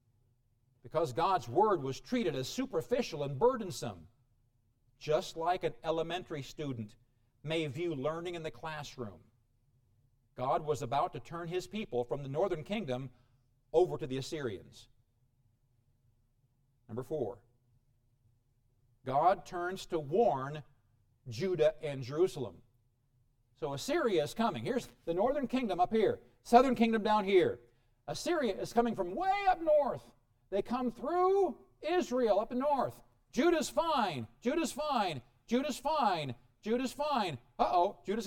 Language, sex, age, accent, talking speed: English, male, 50-69, American, 125 wpm